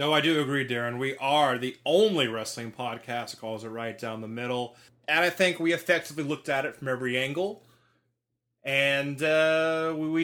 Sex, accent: male, American